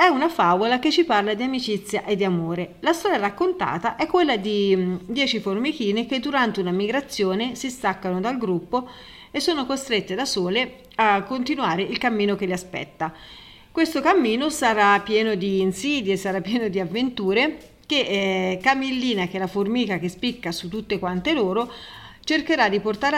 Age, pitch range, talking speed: 40-59, 190-265 Hz, 165 wpm